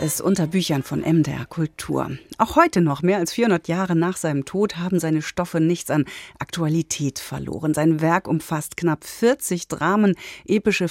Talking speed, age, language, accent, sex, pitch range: 165 wpm, 40-59, German, German, female, 150-195 Hz